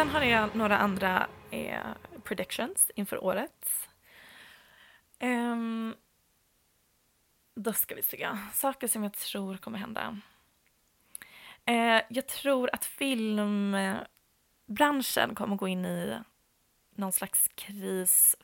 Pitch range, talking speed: 185-220 Hz, 110 wpm